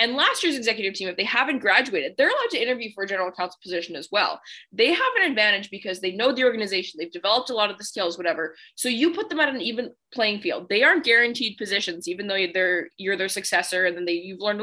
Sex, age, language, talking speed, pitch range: female, 20-39, English, 250 wpm, 185-245 Hz